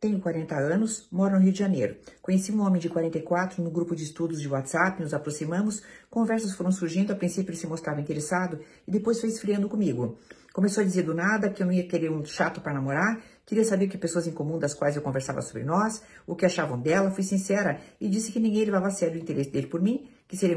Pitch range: 155-200 Hz